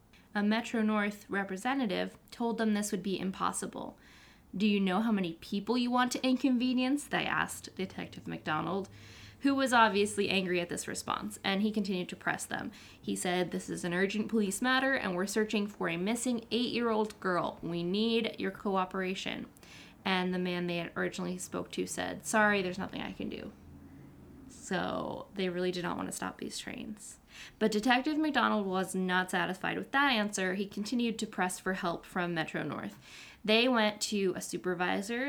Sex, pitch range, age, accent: female, 180-220 Hz, 10-29, American